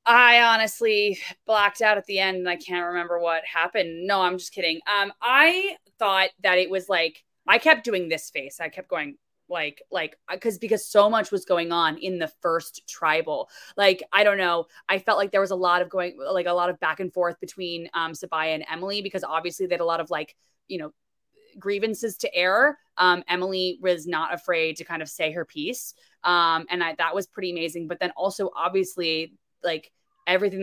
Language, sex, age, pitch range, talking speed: English, female, 20-39, 170-200 Hz, 210 wpm